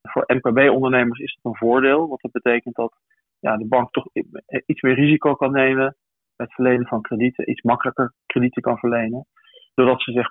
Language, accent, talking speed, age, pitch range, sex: English, Dutch, 185 wpm, 40-59, 120-135 Hz, male